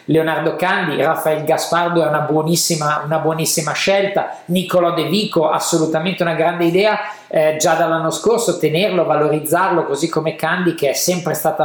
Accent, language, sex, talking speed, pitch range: native, Italian, male, 155 wpm, 145-180 Hz